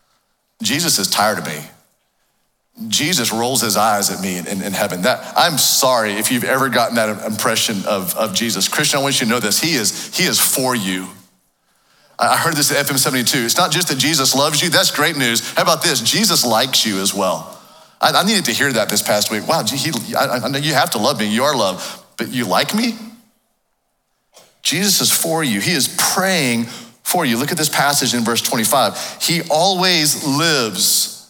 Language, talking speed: English, 210 wpm